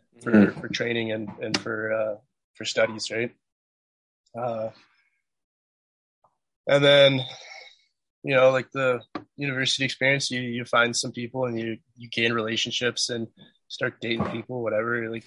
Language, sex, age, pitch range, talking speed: English, male, 20-39, 110-120 Hz, 140 wpm